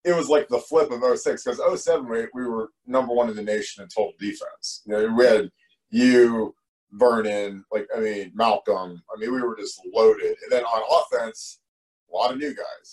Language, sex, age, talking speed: English, male, 30-49, 205 wpm